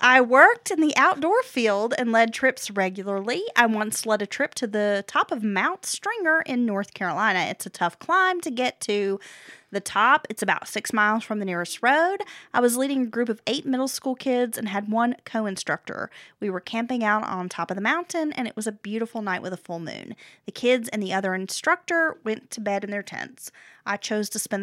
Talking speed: 220 wpm